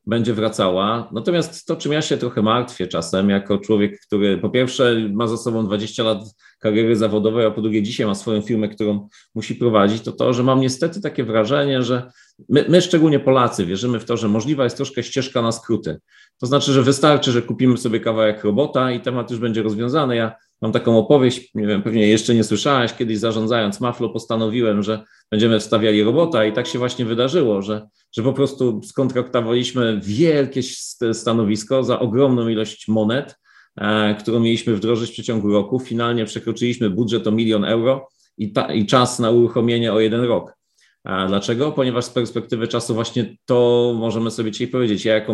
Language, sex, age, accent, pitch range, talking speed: Polish, male, 40-59, native, 110-125 Hz, 180 wpm